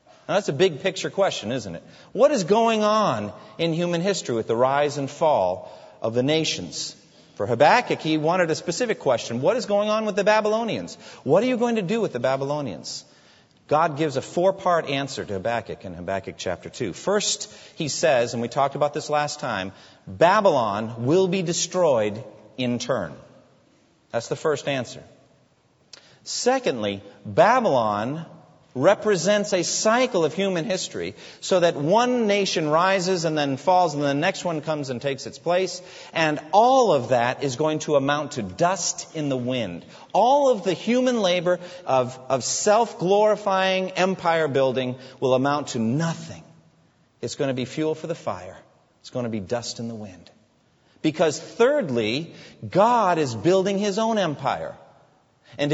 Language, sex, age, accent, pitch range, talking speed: English, male, 40-59, American, 135-190 Hz, 165 wpm